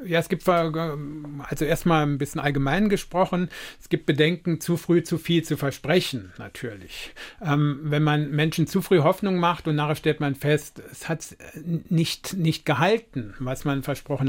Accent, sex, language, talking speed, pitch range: German, male, German, 170 wpm, 145-175 Hz